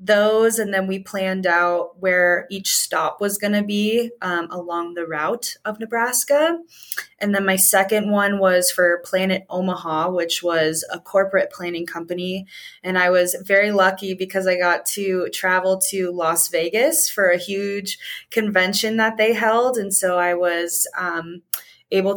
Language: English